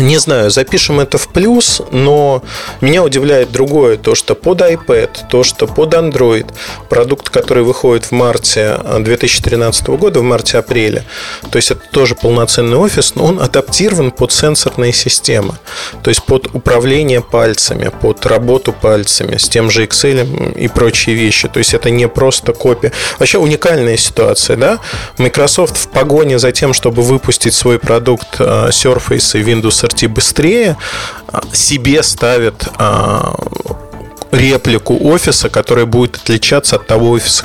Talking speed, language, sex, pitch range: 140 wpm, Russian, male, 115-140 Hz